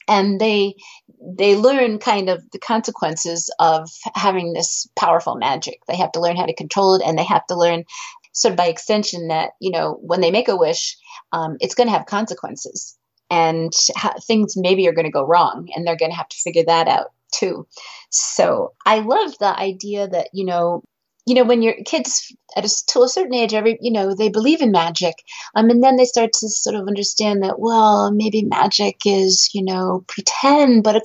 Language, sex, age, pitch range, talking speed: English, female, 30-49, 180-235 Hz, 210 wpm